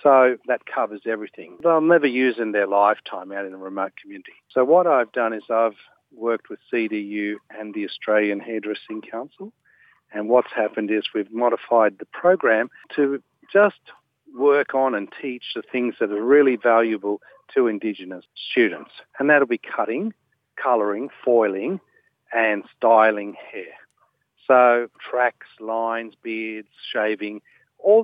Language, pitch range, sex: English, 110-145 Hz, male